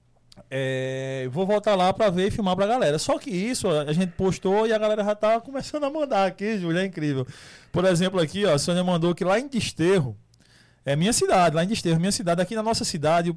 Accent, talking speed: Brazilian, 230 wpm